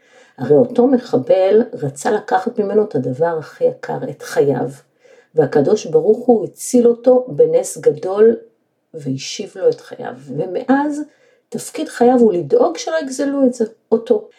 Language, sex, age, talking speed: Hebrew, female, 50-69, 130 wpm